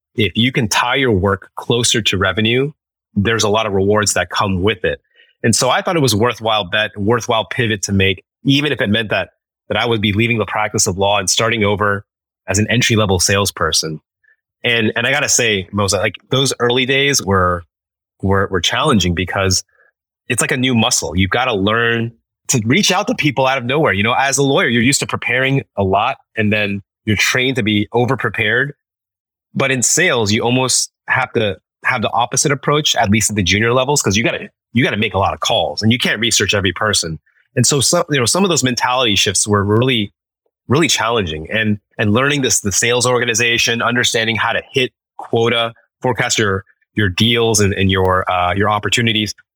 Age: 30-49